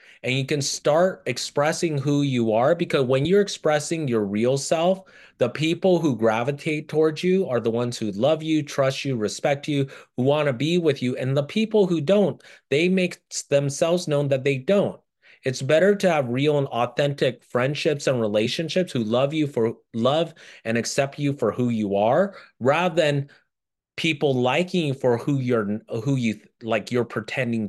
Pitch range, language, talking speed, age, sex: 125-160 Hz, English, 180 wpm, 30-49, male